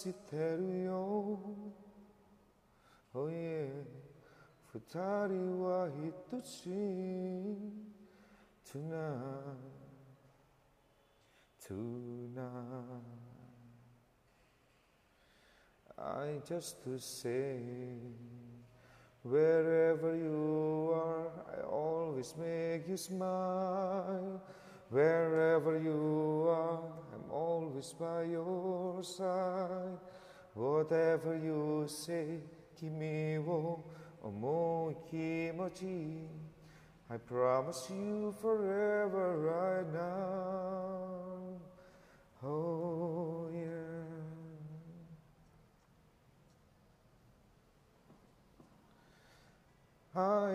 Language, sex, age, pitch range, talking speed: Indonesian, male, 30-49, 150-185 Hz, 50 wpm